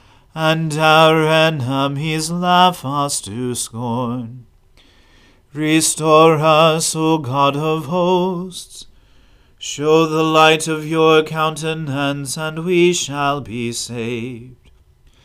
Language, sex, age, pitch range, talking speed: English, male, 40-59, 135-160 Hz, 95 wpm